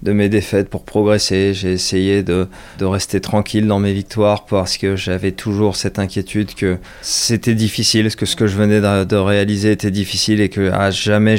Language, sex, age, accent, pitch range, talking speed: French, male, 20-39, French, 95-110 Hz, 195 wpm